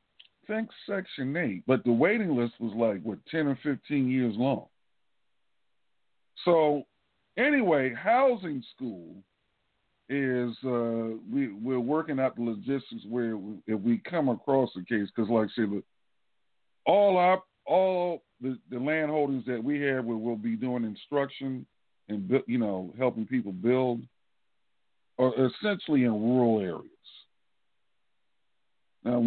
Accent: American